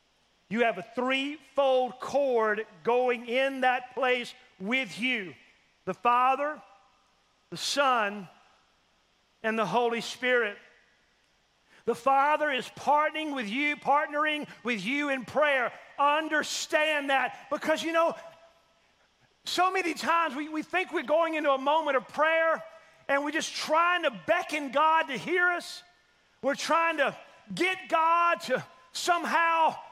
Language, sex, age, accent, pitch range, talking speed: English, male, 40-59, American, 250-320 Hz, 130 wpm